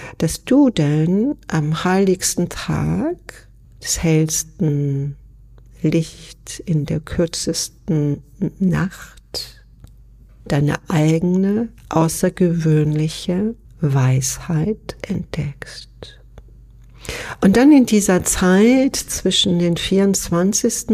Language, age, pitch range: German, 60-79, 150-185 Hz